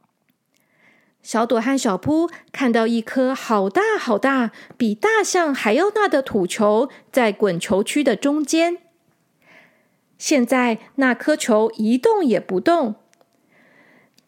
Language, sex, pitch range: Chinese, female, 230-325 Hz